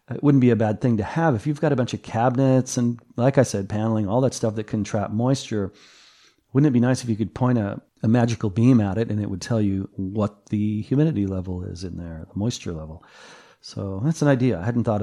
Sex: male